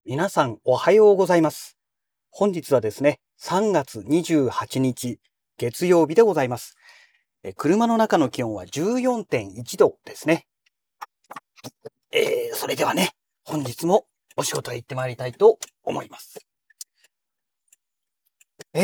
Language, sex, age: Japanese, male, 40-59